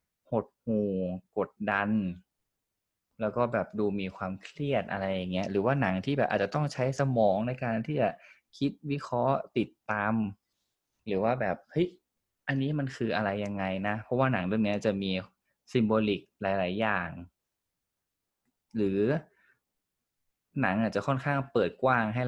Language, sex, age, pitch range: Thai, male, 20-39, 95-115 Hz